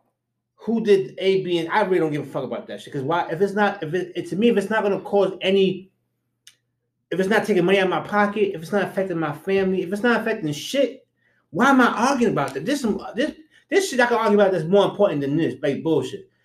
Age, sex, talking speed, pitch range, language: 30-49, male, 255 wpm, 150-195 Hz, English